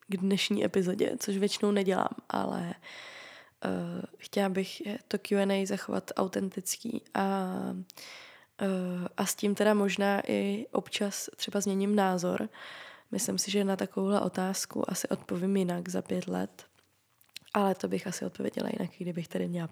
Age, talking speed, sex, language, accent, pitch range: 20-39, 135 wpm, female, Czech, native, 195-220 Hz